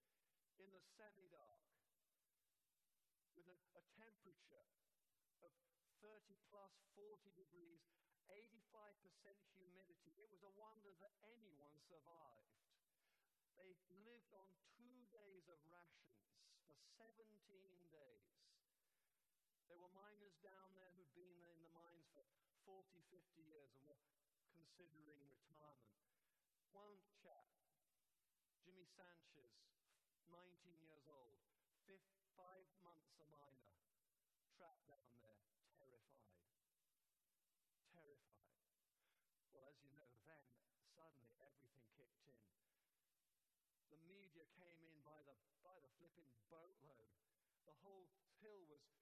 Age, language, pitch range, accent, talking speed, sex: 50-69, English, 145-195 Hz, British, 105 wpm, male